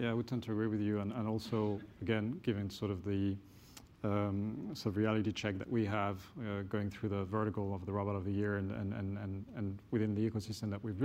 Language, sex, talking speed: English, male, 240 wpm